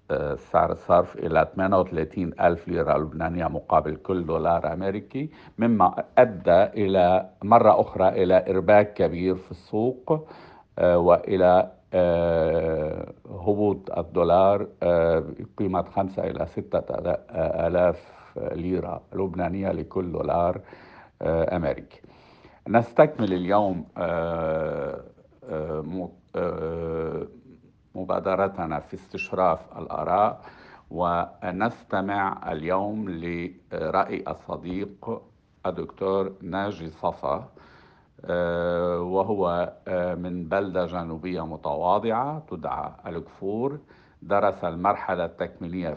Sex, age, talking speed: male, 50-69, 75 wpm